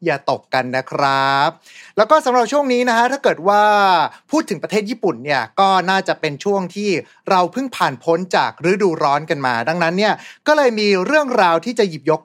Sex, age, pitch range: male, 30-49, 160-220 Hz